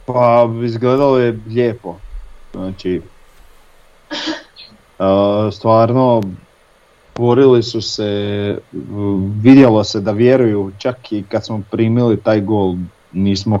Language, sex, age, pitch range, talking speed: Croatian, male, 40-59, 95-115 Hz, 95 wpm